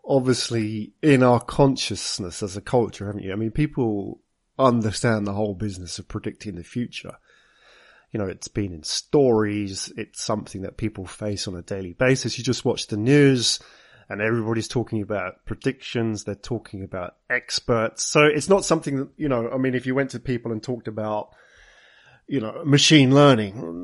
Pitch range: 110-140 Hz